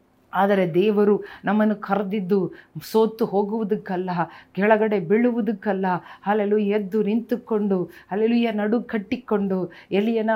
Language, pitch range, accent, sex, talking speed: Kannada, 200-235 Hz, native, female, 85 wpm